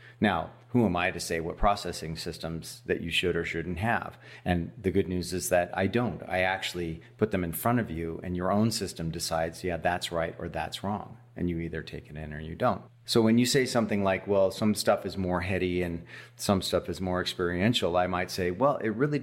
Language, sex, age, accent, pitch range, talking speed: English, male, 40-59, American, 90-120 Hz, 235 wpm